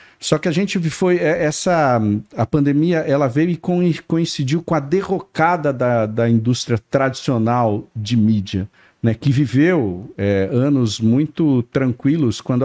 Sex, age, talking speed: male, 50-69, 125 wpm